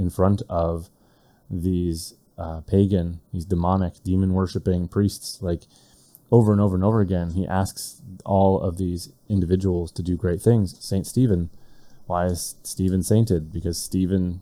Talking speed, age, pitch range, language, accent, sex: 145 wpm, 20-39, 85-100 Hz, English, American, male